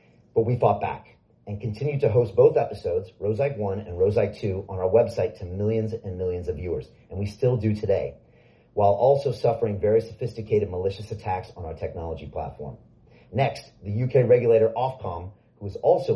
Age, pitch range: 40-59, 100-120 Hz